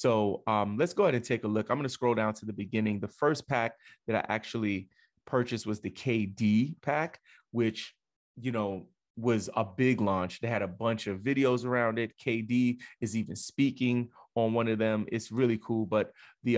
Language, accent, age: English, American, 30-49